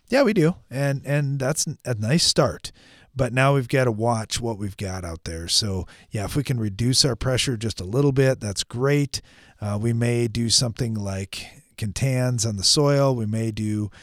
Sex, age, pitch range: male, 40-59, 110-140 Hz